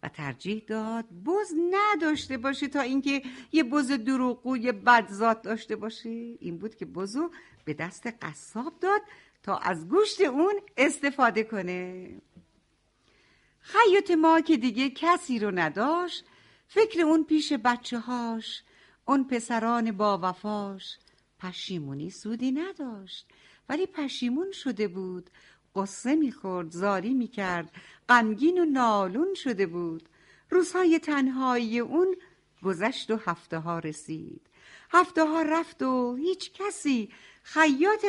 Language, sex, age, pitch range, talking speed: Persian, female, 60-79, 195-315 Hz, 120 wpm